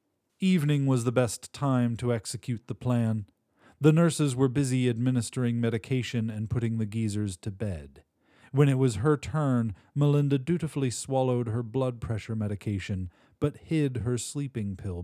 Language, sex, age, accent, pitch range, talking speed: English, male, 40-59, American, 105-135 Hz, 150 wpm